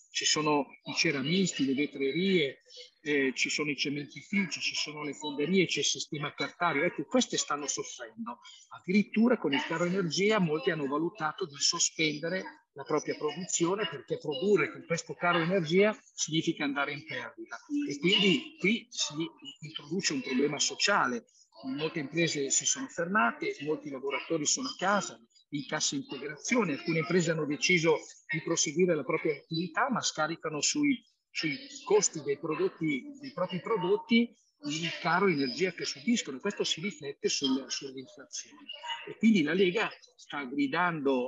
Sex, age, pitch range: male, 50-69, 150-235 Hz